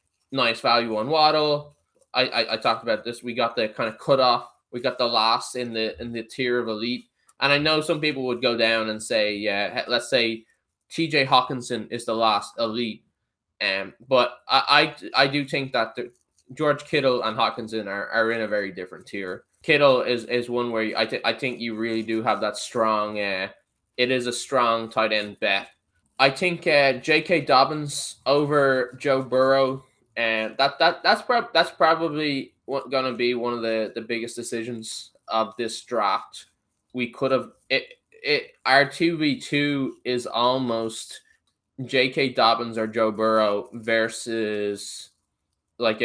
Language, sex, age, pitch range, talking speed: English, male, 10-29, 110-135 Hz, 175 wpm